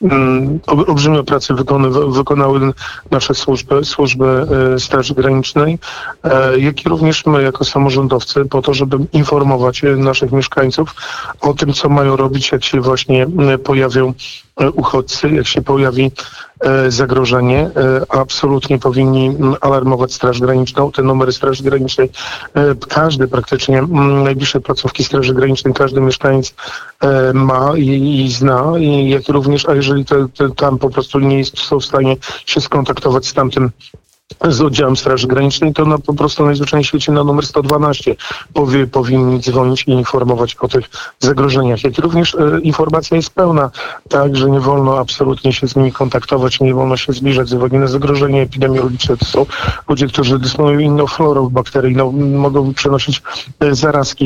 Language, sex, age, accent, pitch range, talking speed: Polish, male, 40-59, native, 130-145 Hz, 140 wpm